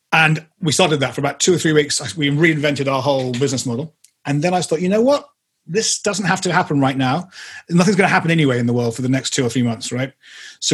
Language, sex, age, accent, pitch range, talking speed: English, male, 30-49, British, 130-160 Hz, 265 wpm